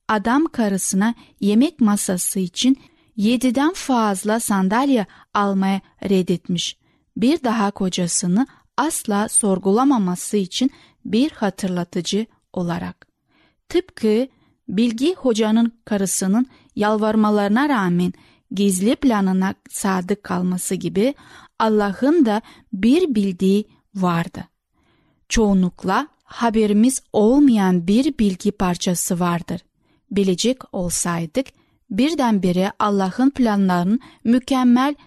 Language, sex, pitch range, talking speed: Turkish, female, 195-250 Hz, 80 wpm